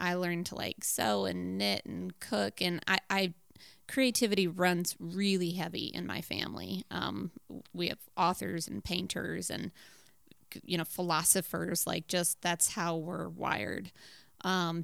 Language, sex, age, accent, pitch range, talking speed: English, female, 20-39, American, 170-195 Hz, 145 wpm